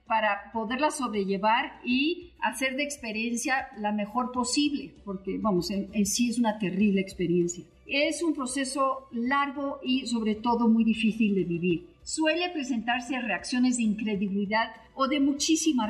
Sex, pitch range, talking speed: female, 210-265 Hz, 145 wpm